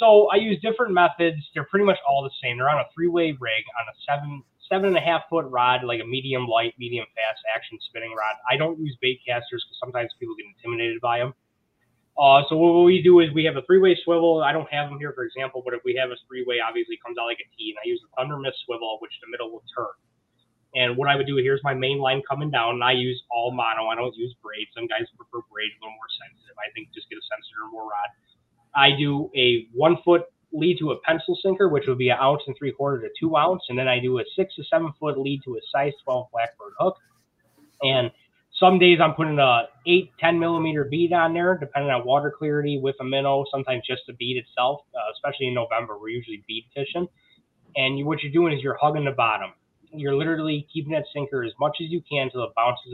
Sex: male